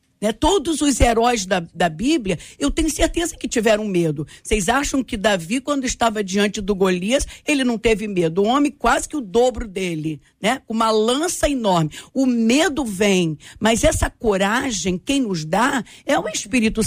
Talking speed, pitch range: 180 wpm, 200-270 Hz